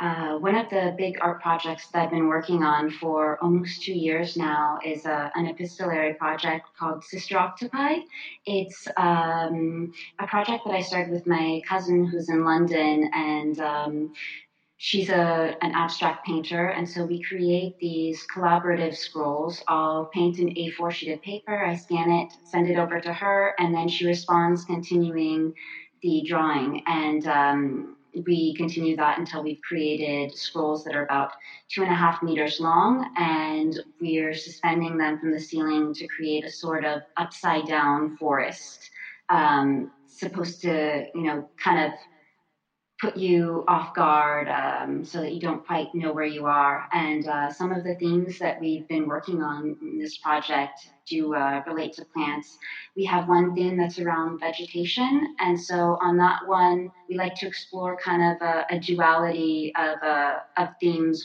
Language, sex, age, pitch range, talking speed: English, female, 30-49, 155-175 Hz, 170 wpm